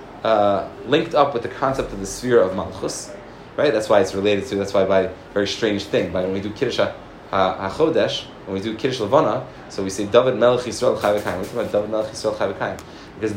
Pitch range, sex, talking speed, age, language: 110-150 Hz, male, 210 wpm, 20-39, English